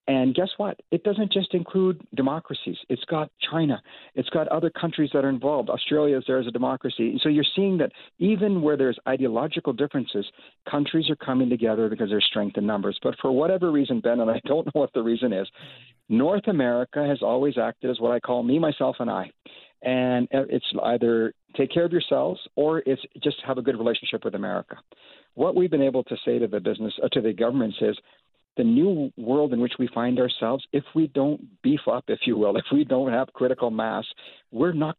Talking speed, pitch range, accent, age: 210 wpm, 120-170 Hz, American, 50-69